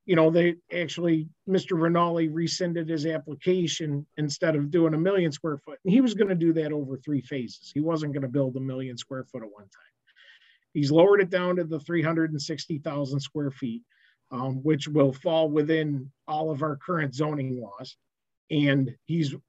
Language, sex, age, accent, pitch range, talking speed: English, male, 50-69, American, 140-170 Hz, 180 wpm